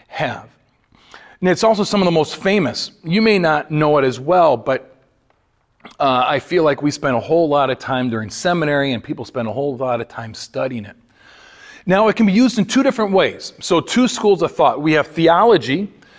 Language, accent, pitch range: English, American, 135-195 Hz